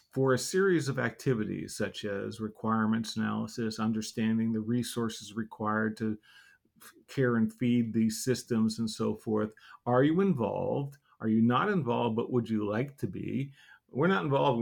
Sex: male